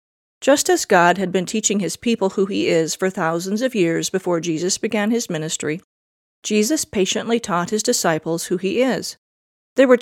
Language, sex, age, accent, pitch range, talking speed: English, female, 40-59, American, 175-225 Hz, 180 wpm